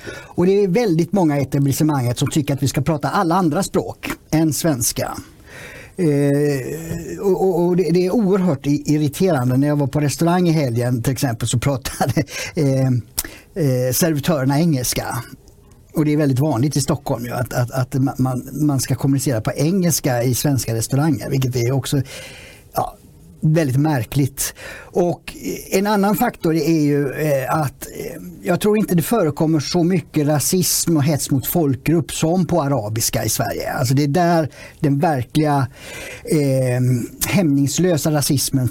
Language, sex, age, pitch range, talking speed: Swedish, male, 50-69, 135-170 Hz, 150 wpm